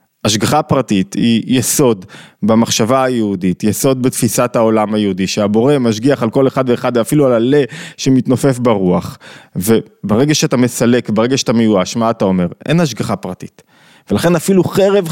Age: 20-39